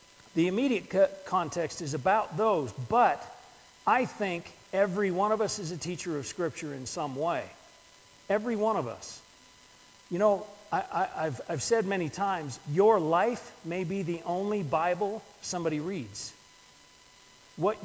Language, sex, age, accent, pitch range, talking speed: English, male, 40-59, American, 170-215 Hz, 140 wpm